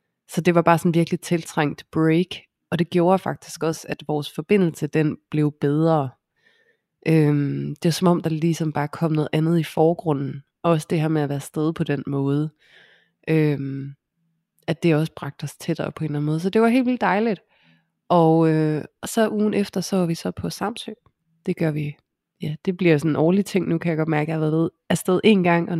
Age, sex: 20-39, female